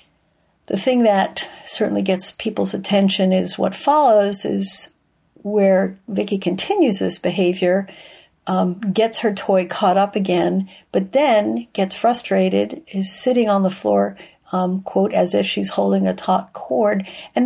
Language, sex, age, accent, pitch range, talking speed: English, female, 50-69, American, 175-205 Hz, 145 wpm